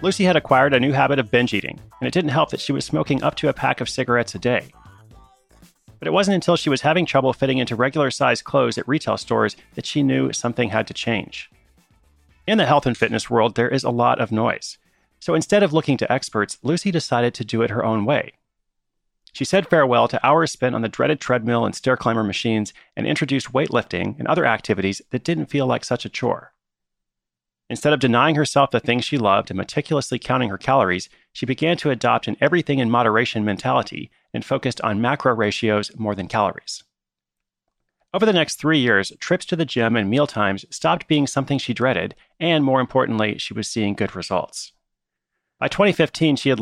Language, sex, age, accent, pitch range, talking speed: English, male, 30-49, American, 110-145 Hz, 200 wpm